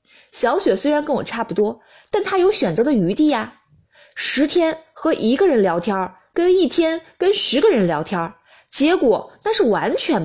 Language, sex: Chinese, female